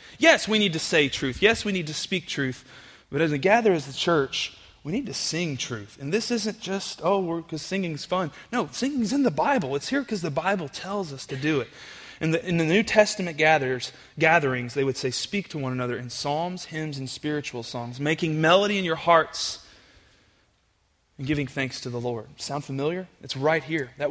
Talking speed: 210 wpm